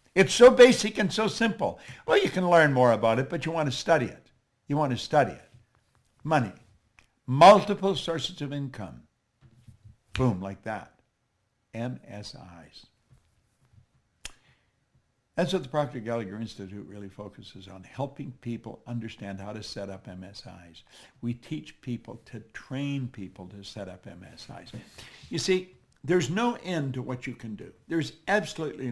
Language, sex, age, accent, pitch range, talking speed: English, male, 60-79, American, 105-140 Hz, 150 wpm